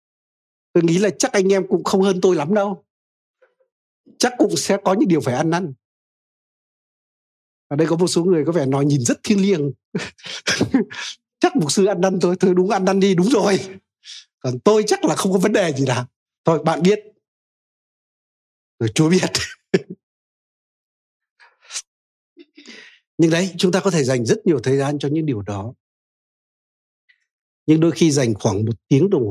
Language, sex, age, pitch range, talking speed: Vietnamese, male, 60-79, 125-185 Hz, 175 wpm